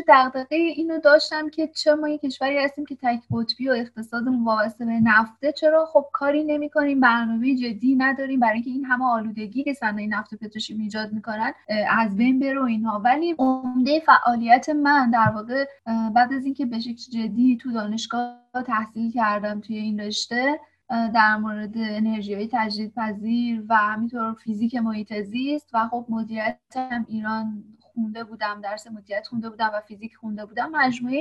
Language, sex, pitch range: Persian, female, 220-260 Hz